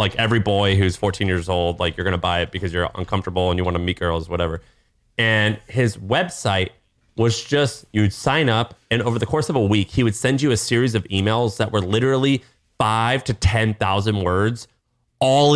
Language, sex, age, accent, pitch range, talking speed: English, male, 30-49, American, 95-120 Hz, 210 wpm